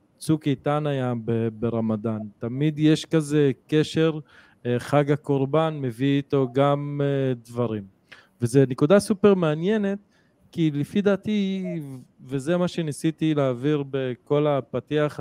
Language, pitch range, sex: Hebrew, 120-145 Hz, male